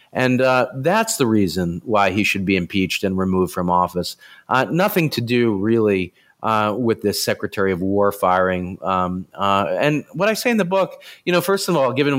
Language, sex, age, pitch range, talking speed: English, male, 40-59, 95-125 Hz, 200 wpm